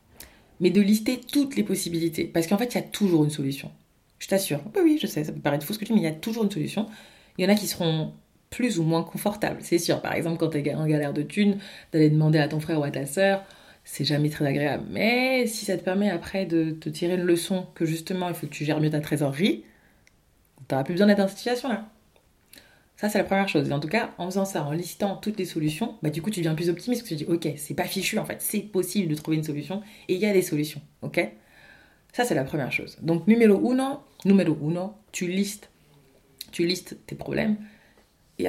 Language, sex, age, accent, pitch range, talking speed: French, female, 30-49, French, 155-205 Hz, 255 wpm